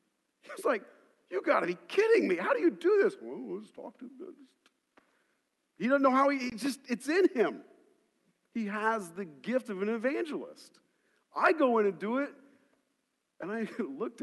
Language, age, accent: English, 50-69, American